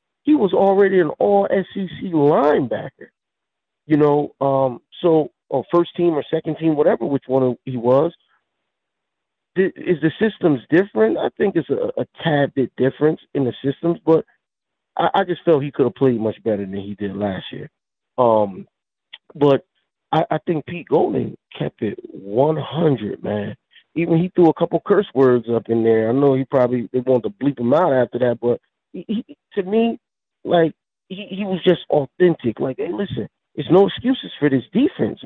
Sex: male